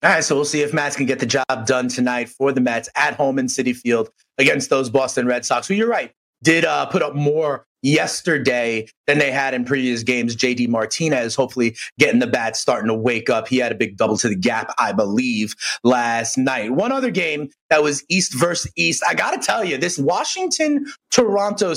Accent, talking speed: American, 215 wpm